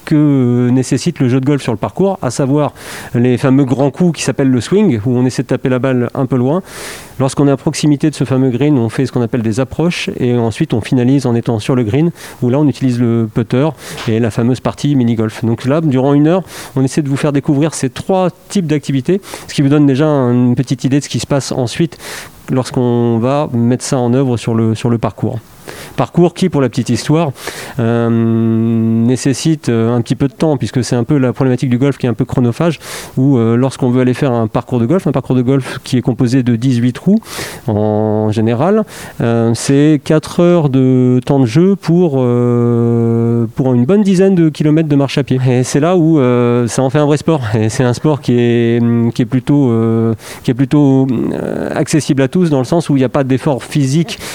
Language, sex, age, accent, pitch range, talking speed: French, male, 40-59, French, 120-150 Hz, 225 wpm